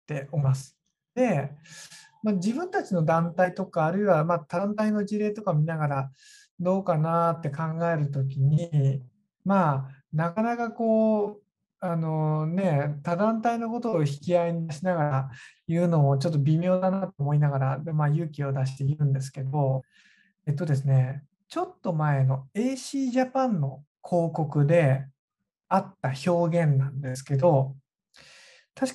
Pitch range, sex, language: 145-215 Hz, male, Japanese